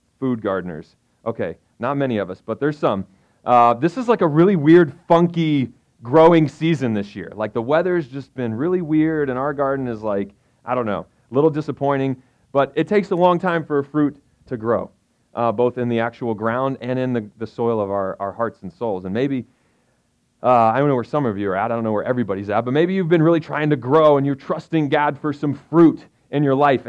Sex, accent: male, American